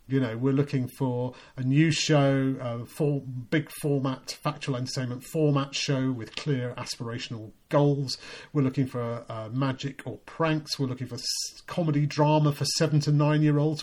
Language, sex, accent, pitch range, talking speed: English, male, British, 125-150 Hz, 170 wpm